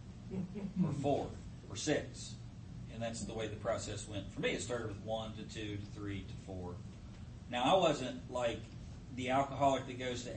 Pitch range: 110-145 Hz